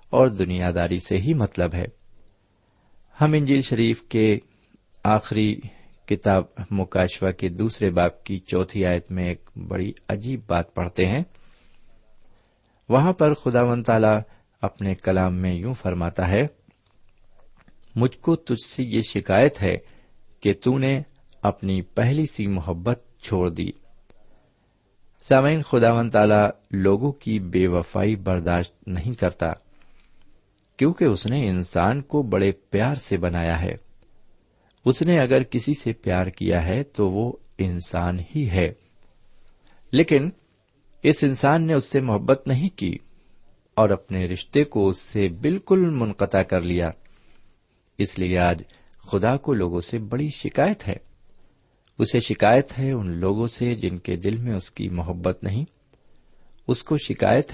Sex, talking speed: male, 135 wpm